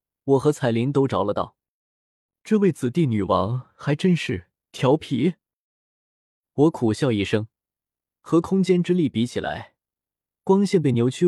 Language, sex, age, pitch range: Chinese, male, 20-39, 120-180 Hz